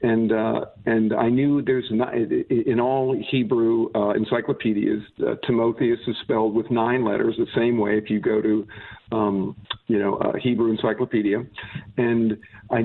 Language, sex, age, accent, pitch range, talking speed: English, male, 50-69, American, 110-125 Hz, 160 wpm